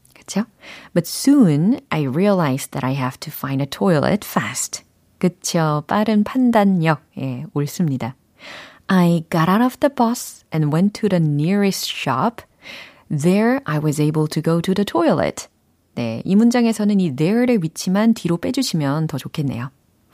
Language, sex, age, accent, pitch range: Korean, female, 30-49, native, 150-205 Hz